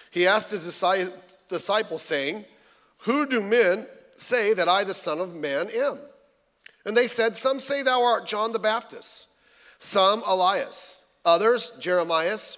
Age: 40-59